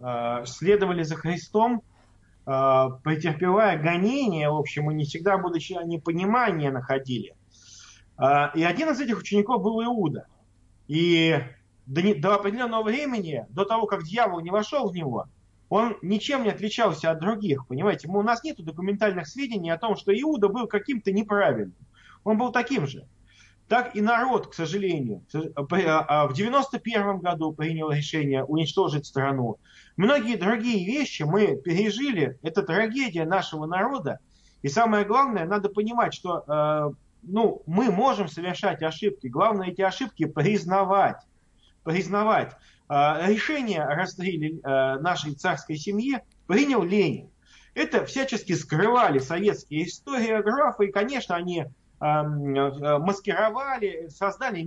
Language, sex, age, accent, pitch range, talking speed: Russian, male, 20-39, native, 150-215 Hz, 120 wpm